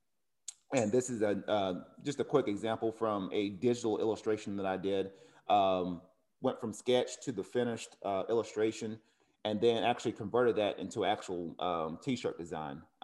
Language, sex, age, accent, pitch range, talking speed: English, male, 30-49, American, 95-120 Hz, 155 wpm